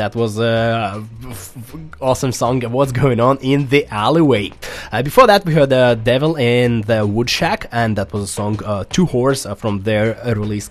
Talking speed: 195 wpm